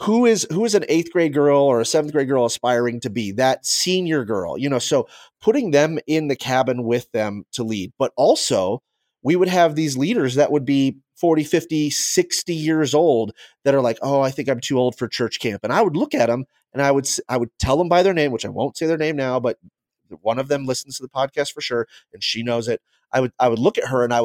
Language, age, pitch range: English, 30-49, 120-155 Hz